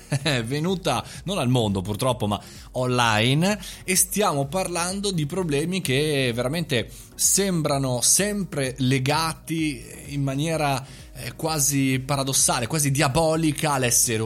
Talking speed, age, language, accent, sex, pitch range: 105 wpm, 20-39, Italian, native, male, 115-155 Hz